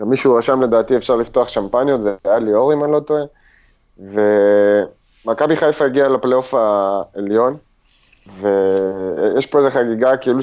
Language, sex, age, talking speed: Hebrew, male, 30-49, 140 wpm